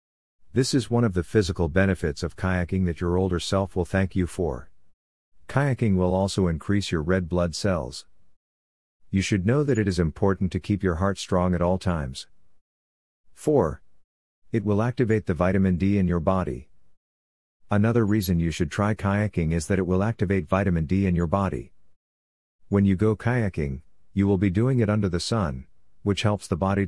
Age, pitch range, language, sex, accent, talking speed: 50-69, 85-100 Hz, English, male, American, 185 wpm